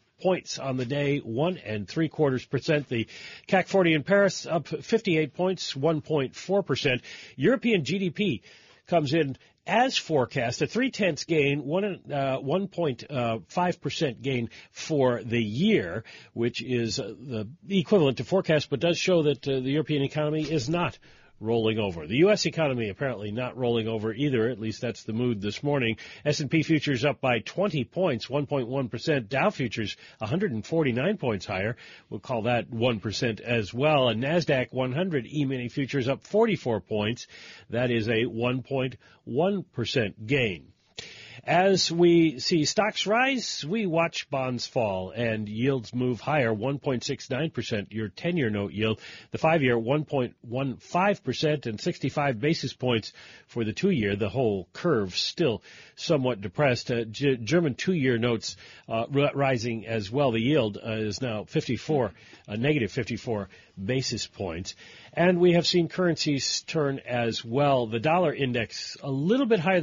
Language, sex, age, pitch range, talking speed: English, male, 40-59, 115-160 Hz, 145 wpm